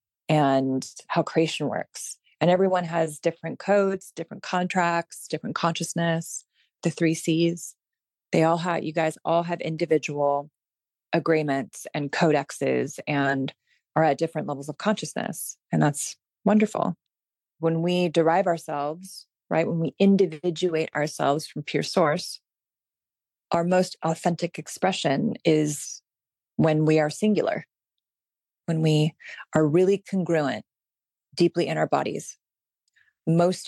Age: 30-49